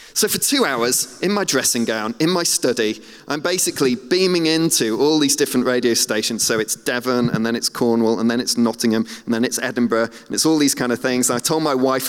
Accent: British